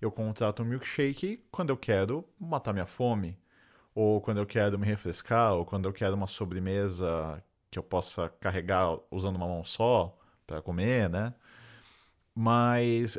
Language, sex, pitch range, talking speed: Portuguese, male, 95-125 Hz, 155 wpm